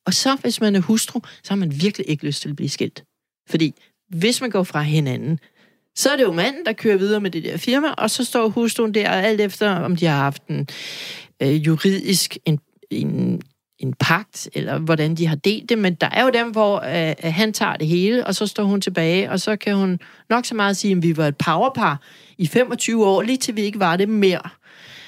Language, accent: Danish, native